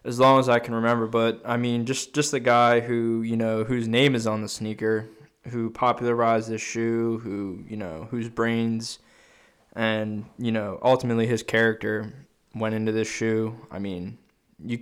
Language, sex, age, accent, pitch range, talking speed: English, male, 20-39, American, 110-120 Hz, 180 wpm